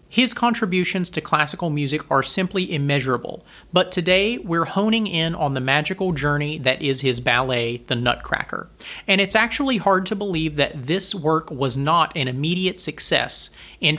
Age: 40-59